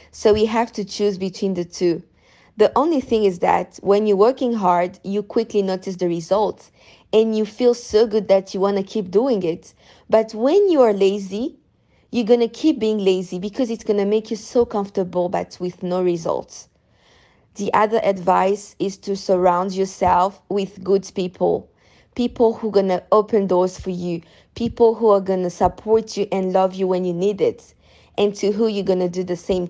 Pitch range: 185-220 Hz